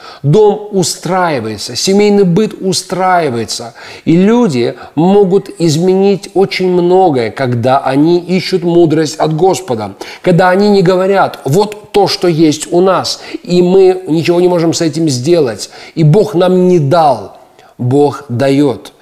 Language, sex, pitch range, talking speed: Russian, male, 135-180 Hz, 135 wpm